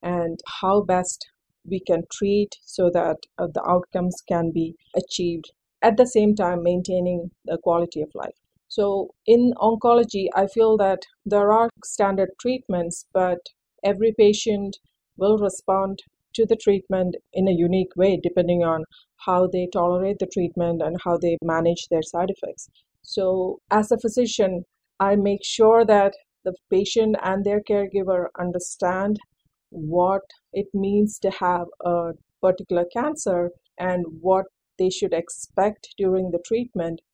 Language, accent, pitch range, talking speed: English, Indian, 180-210 Hz, 140 wpm